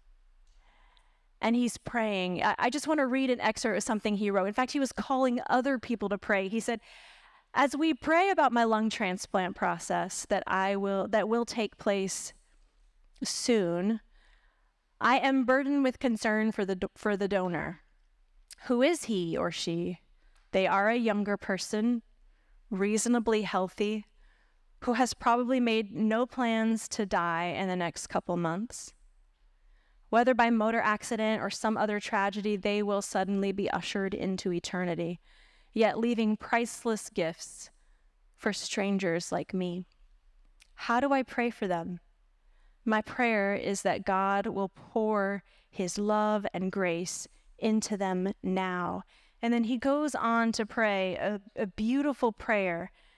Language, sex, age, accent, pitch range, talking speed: English, female, 30-49, American, 195-235 Hz, 145 wpm